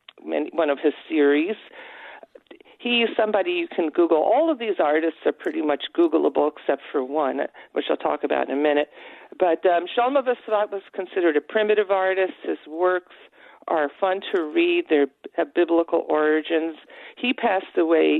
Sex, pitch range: female, 155-240 Hz